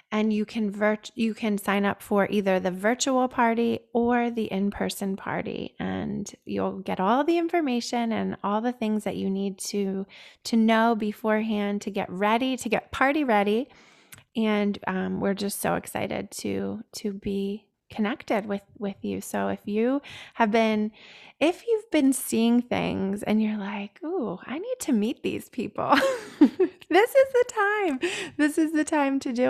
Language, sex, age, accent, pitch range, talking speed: English, female, 20-39, American, 205-250 Hz, 165 wpm